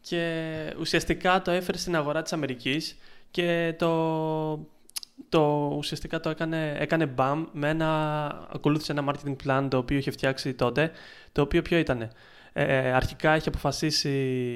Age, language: 20-39, Greek